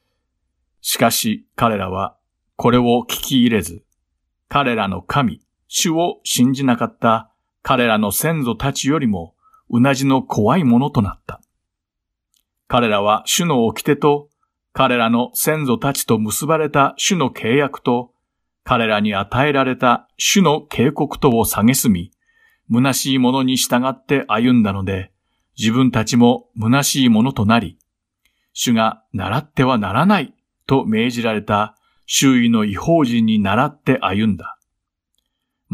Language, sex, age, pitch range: Japanese, male, 50-69, 110-140 Hz